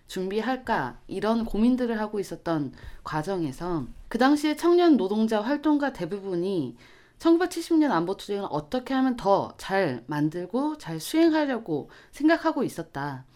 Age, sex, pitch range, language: 20-39, female, 160-255 Hz, Korean